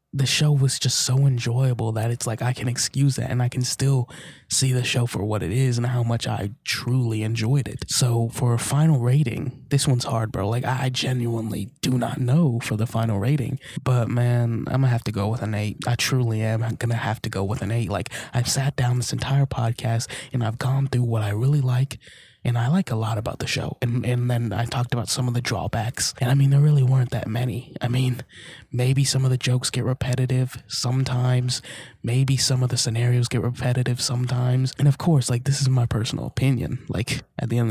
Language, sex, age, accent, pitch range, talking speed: English, male, 20-39, American, 120-135 Hz, 230 wpm